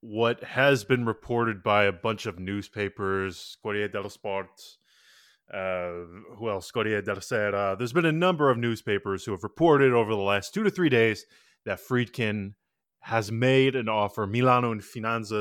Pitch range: 95-115 Hz